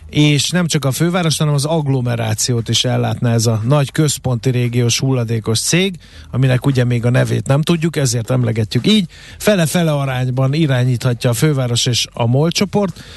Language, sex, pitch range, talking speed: Hungarian, male, 120-150 Hz, 165 wpm